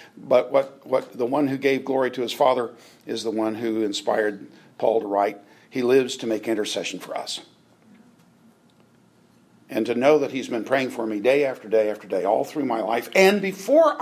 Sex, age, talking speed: male, 50-69, 195 wpm